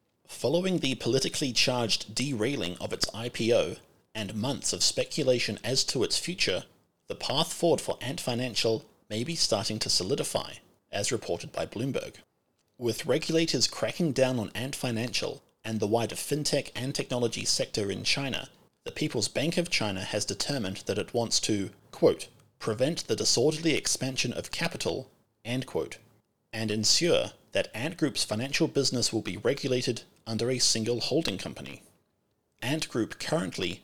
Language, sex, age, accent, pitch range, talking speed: English, male, 30-49, Australian, 110-135 Hz, 150 wpm